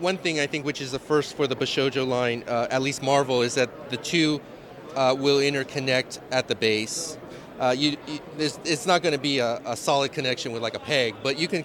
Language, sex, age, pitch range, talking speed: English, male, 30-49, 130-155 Hz, 220 wpm